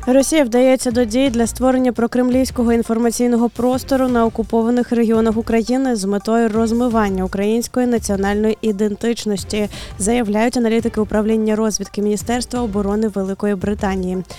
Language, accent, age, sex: Ukrainian, native, 20-39, female